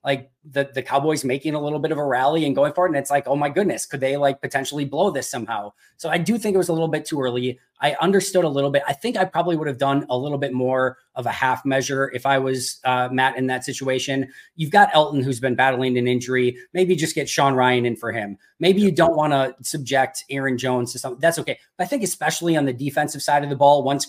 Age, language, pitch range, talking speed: 20-39, English, 130-150 Hz, 265 wpm